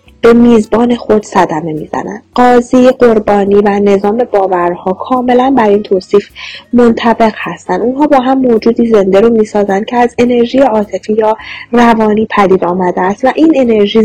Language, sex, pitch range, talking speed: Persian, female, 190-255 Hz, 150 wpm